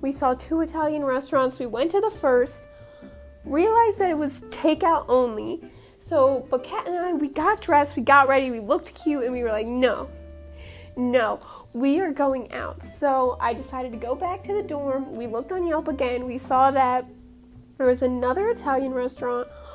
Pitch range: 245-305 Hz